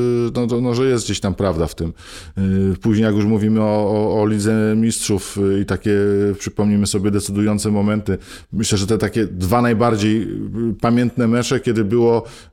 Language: Polish